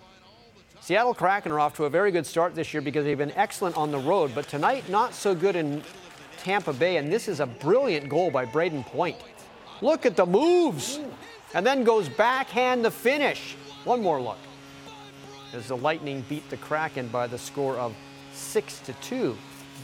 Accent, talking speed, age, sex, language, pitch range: American, 180 wpm, 40-59, male, English, 135-180 Hz